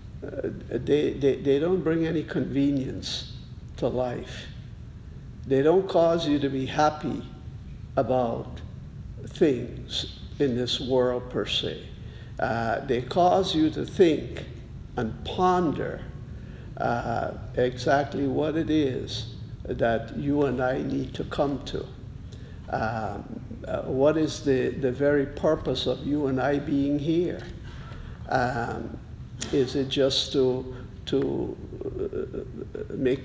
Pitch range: 125-145 Hz